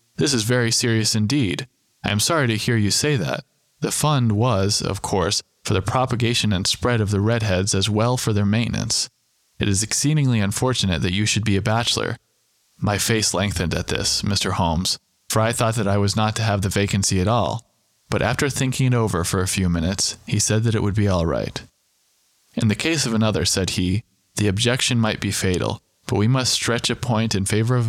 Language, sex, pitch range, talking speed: English, male, 100-120 Hz, 215 wpm